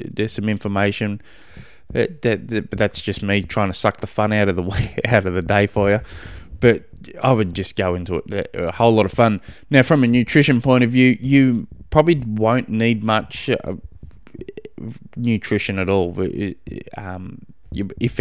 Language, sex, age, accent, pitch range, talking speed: English, male, 20-39, Australian, 95-120 Hz, 175 wpm